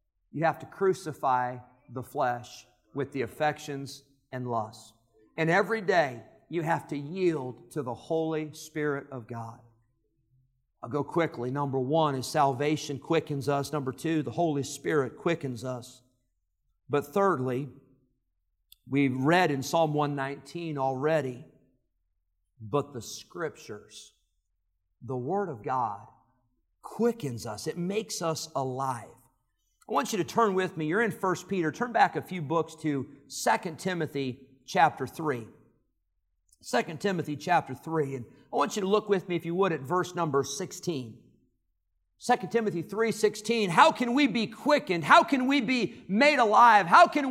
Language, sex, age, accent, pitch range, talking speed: English, male, 50-69, American, 130-190 Hz, 150 wpm